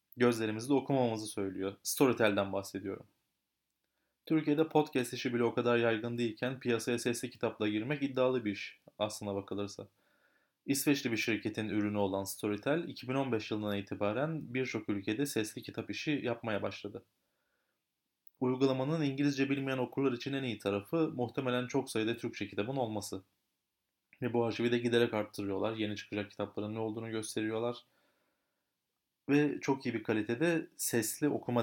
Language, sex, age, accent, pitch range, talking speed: Turkish, male, 30-49, native, 105-135 Hz, 135 wpm